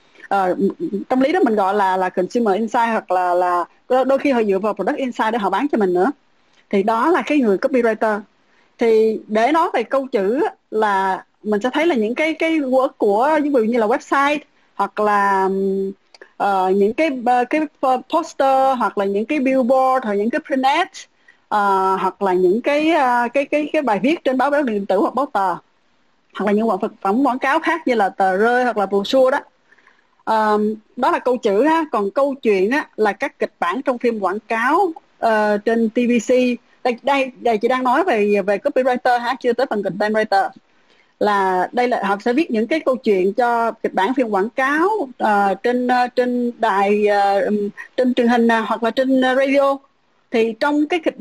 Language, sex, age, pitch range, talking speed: Vietnamese, female, 20-39, 205-275 Hz, 205 wpm